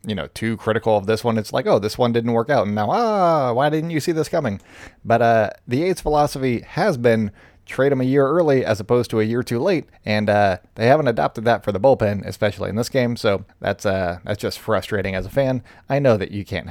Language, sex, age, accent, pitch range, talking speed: English, male, 20-39, American, 100-130 Hz, 255 wpm